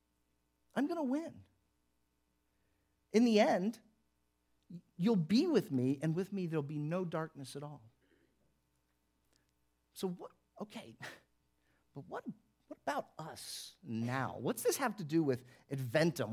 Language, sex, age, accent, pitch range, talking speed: English, male, 40-59, American, 115-175 Hz, 130 wpm